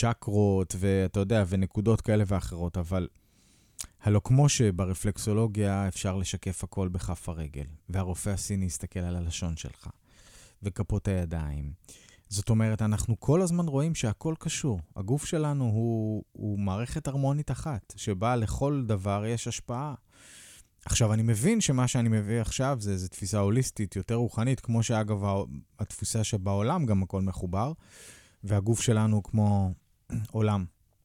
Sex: male